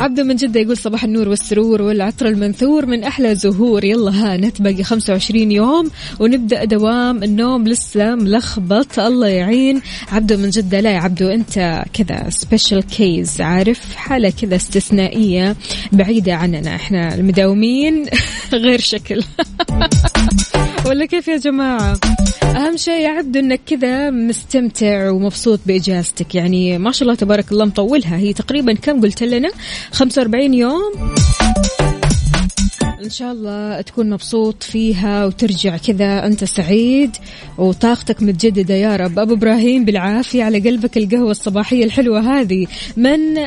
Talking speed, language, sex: 125 wpm, Arabic, female